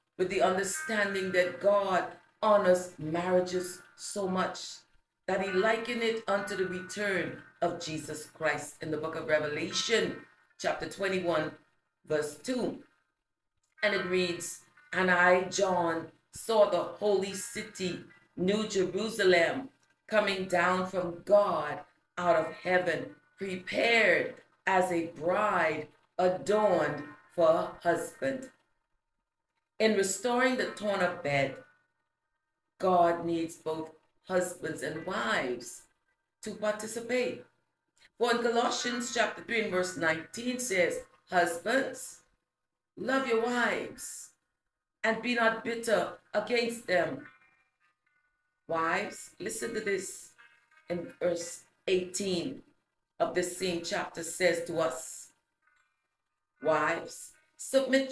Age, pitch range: 40-59, 170-220 Hz